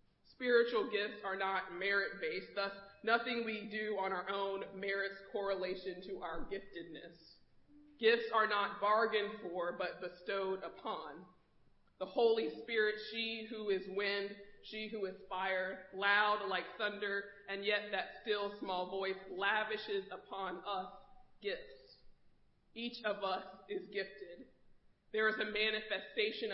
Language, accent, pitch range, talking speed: English, American, 190-215 Hz, 130 wpm